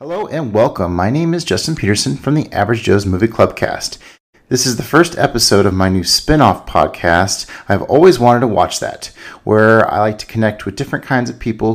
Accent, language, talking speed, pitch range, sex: American, English, 205 wpm, 95-115 Hz, male